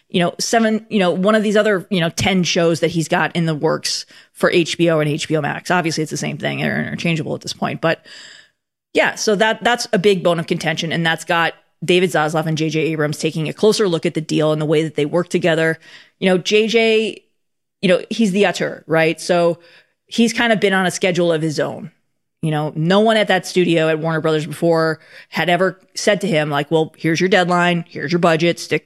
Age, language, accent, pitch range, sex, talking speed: 20-39, English, American, 160-200 Hz, female, 230 wpm